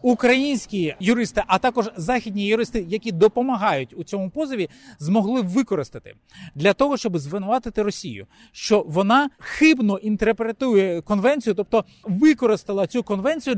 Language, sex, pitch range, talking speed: Ukrainian, male, 185-245 Hz, 120 wpm